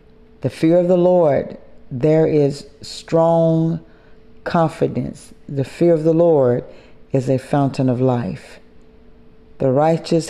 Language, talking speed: English, 120 wpm